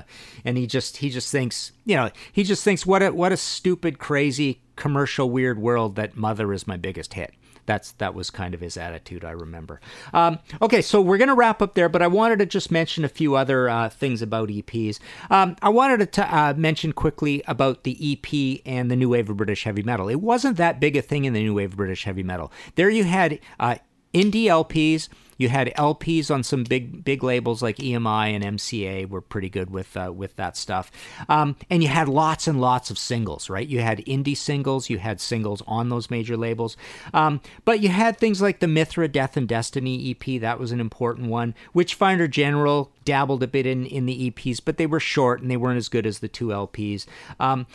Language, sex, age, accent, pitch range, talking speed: English, male, 50-69, American, 110-155 Hz, 220 wpm